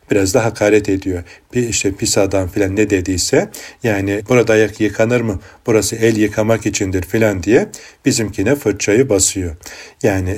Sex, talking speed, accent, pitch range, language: male, 150 wpm, native, 95-115 Hz, Turkish